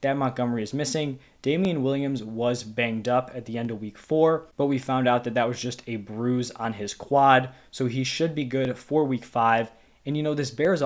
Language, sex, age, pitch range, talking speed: English, male, 20-39, 120-140 Hz, 220 wpm